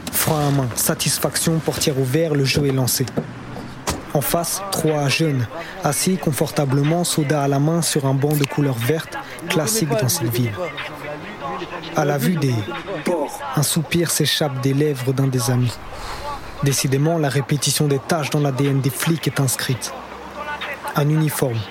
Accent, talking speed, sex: French, 150 wpm, male